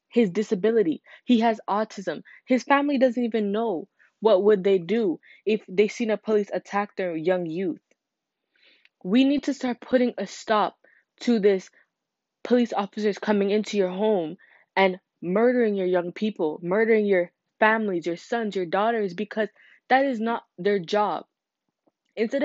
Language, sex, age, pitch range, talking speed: English, female, 20-39, 195-240 Hz, 150 wpm